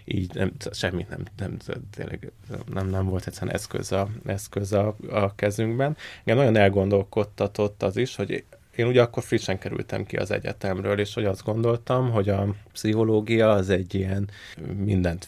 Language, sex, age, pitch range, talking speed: Hungarian, male, 20-39, 95-110 Hz, 160 wpm